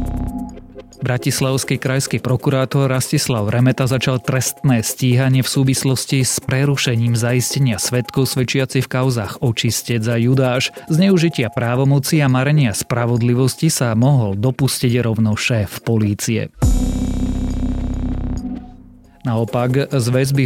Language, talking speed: Slovak, 100 wpm